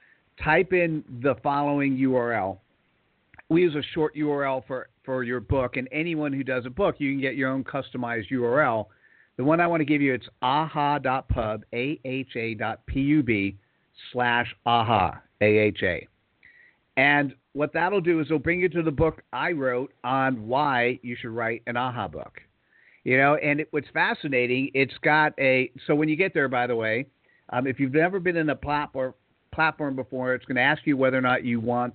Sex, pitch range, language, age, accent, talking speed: male, 125-150 Hz, English, 50-69, American, 190 wpm